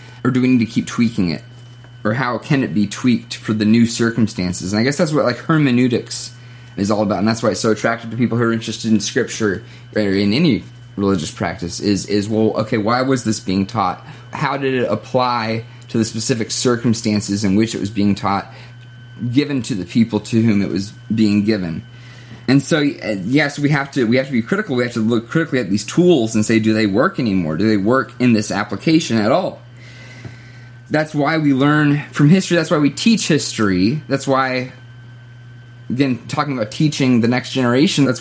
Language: English